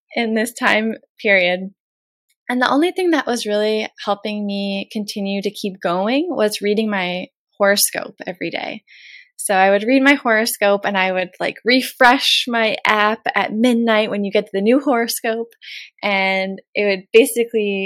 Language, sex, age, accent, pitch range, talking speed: English, female, 20-39, American, 195-255 Hz, 165 wpm